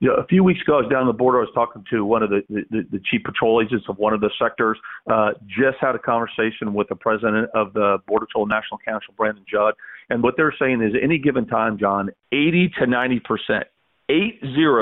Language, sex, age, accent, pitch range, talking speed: English, male, 50-69, American, 110-130 Hz, 240 wpm